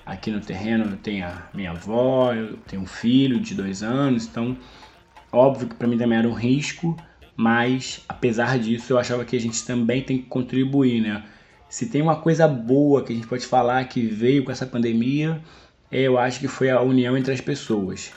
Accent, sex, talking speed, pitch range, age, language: Brazilian, male, 200 wpm, 110-130 Hz, 20-39, Portuguese